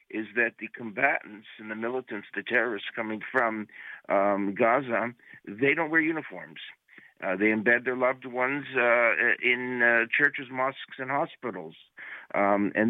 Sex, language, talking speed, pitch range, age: male, English, 150 wpm, 110-130 Hz, 60-79